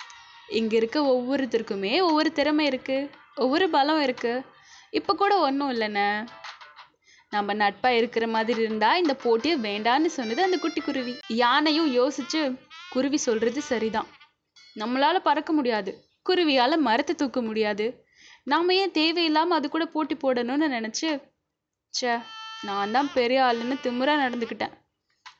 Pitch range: 225-305 Hz